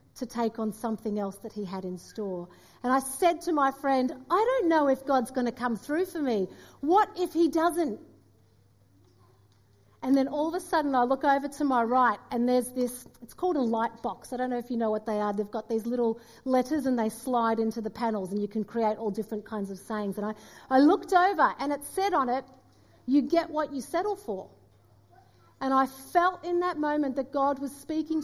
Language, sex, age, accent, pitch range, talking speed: English, female, 40-59, Australian, 215-285 Hz, 225 wpm